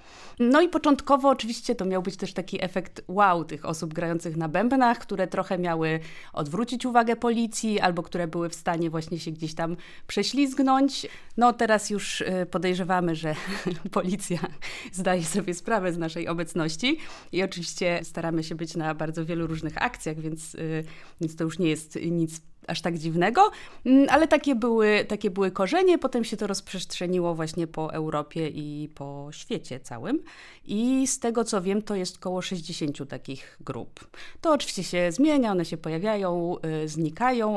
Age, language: 20-39, Polish